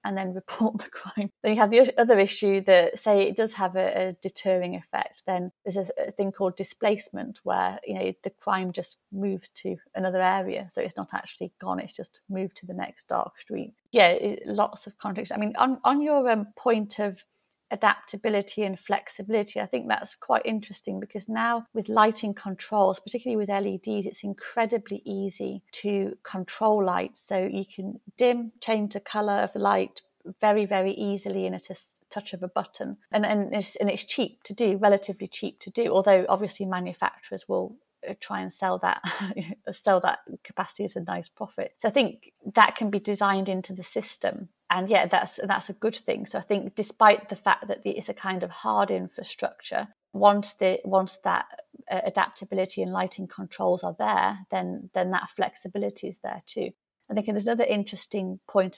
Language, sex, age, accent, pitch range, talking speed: English, female, 30-49, British, 185-215 Hz, 190 wpm